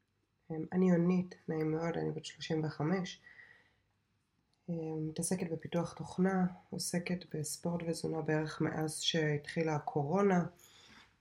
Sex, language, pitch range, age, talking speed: female, Hebrew, 150-175 Hz, 20-39, 90 wpm